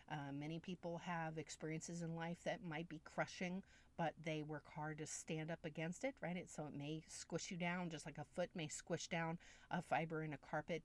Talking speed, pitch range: 215 wpm, 145-175 Hz